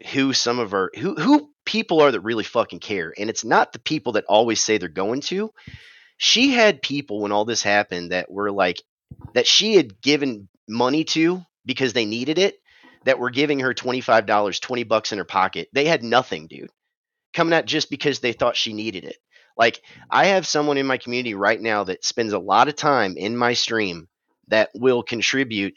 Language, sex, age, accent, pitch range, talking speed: English, male, 30-49, American, 110-150 Hz, 205 wpm